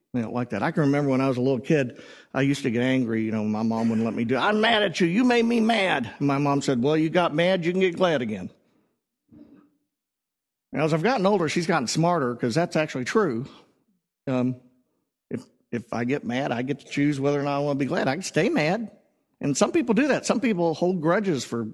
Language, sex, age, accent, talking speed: English, male, 50-69, American, 255 wpm